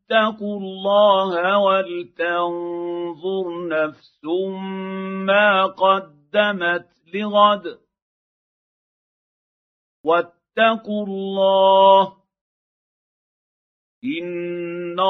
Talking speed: 40 wpm